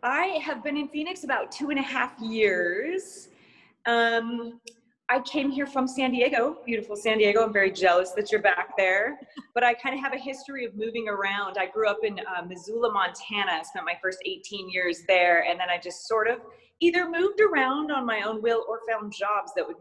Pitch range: 180-260 Hz